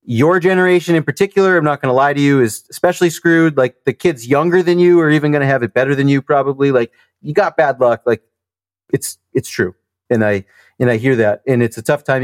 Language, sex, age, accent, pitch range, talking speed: English, male, 30-49, American, 130-190 Hz, 245 wpm